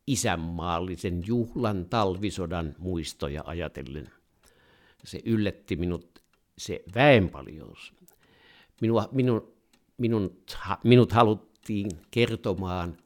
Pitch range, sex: 85-110 Hz, male